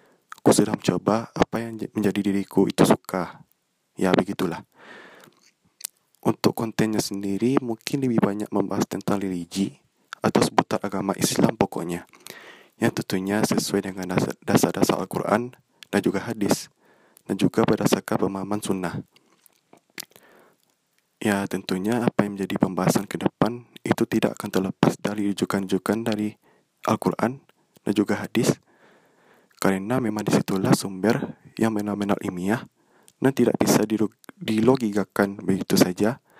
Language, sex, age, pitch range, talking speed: Indonesian, male, 20-39, 95-110 Hz, 115 wpm